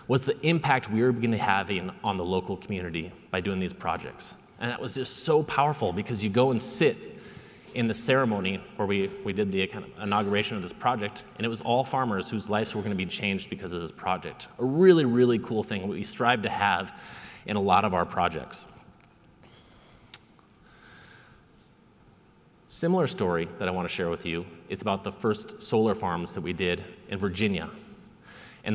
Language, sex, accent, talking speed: English, male, American, 190 wpm